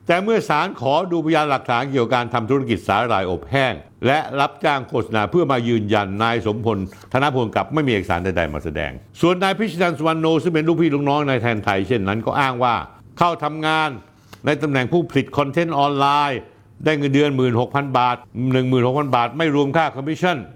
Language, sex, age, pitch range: Thai, male, 60-79, 120-165 Hz